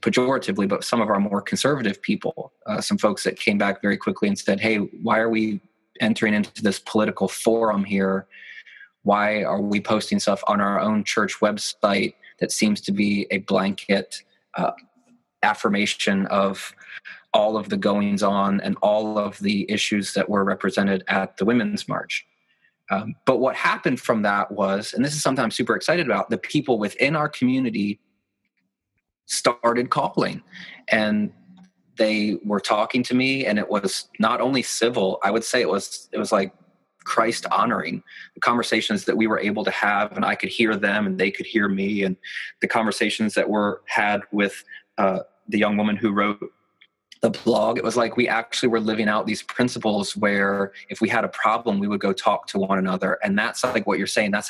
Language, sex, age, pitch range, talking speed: English, male, 20-39, 100-120 Hz, 185 wpm